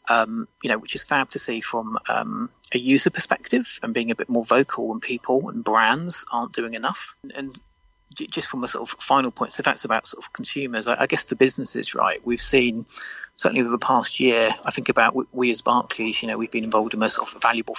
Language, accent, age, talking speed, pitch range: English, British, 30-49, 245 wpm, 120-145 Hz